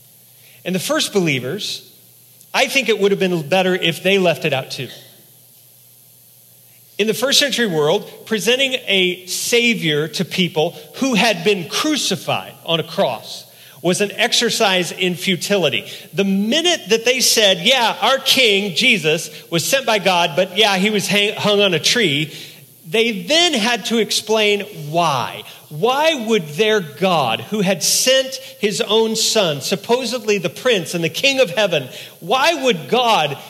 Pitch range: 155-225 Hz